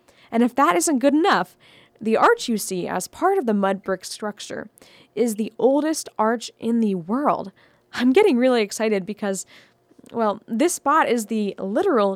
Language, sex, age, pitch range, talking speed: English, female, 10-29, 200-265 Hz, 175 wpm